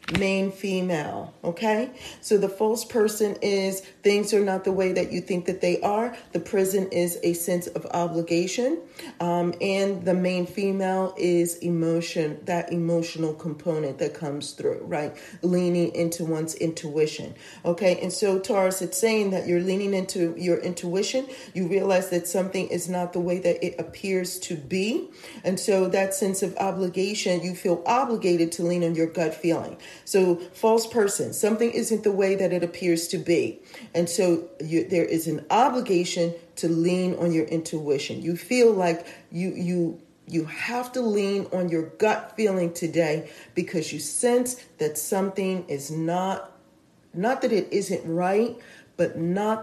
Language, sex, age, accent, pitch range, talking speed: English, female, 40-59, American, 170-205 Hz, 160 wpm